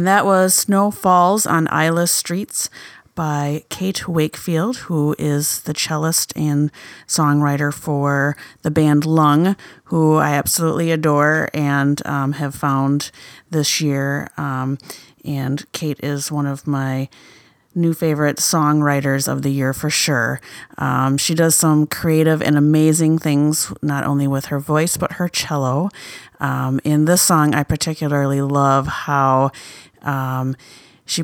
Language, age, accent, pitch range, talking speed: English, 30-49, American, 140-160 Hz, 140 wpm